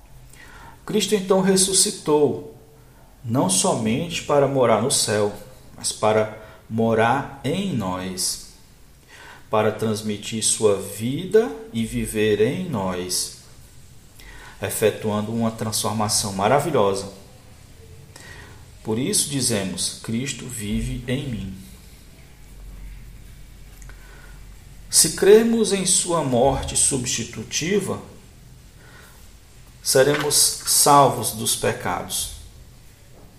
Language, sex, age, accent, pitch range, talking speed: Portuguese, male, 50-69, Brazilian, 105-135 Hz, 75 wpm